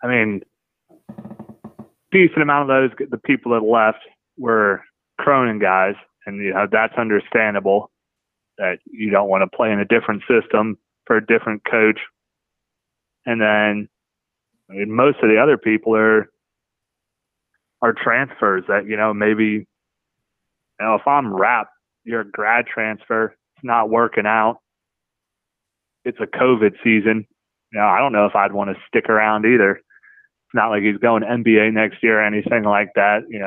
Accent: American